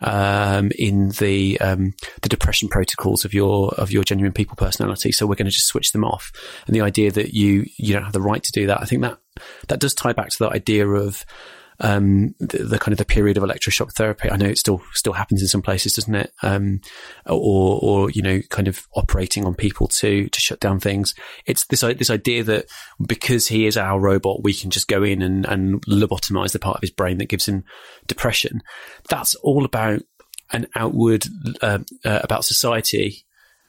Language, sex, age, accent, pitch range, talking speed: English, male, 30-49, British, 100-110 Hz, 210 wpm